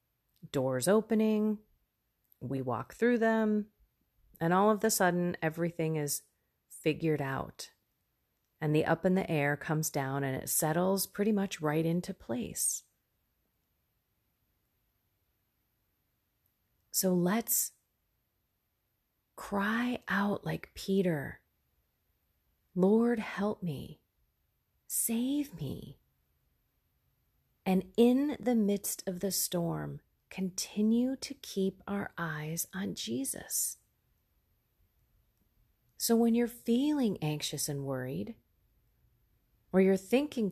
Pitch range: 145-200 Hz